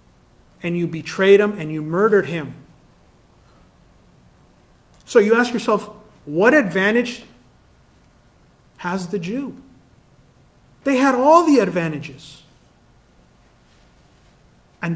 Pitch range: 155-200 Hz